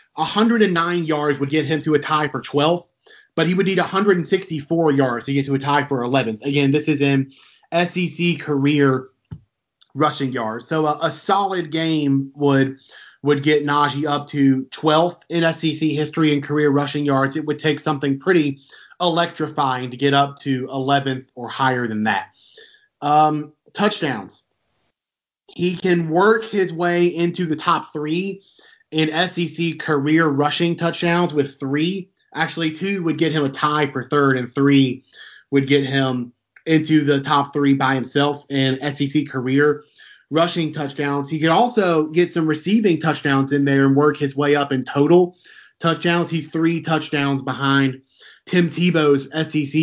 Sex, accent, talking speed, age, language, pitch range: male, American, 160 wpm, 30-49, English, 140-165 Hz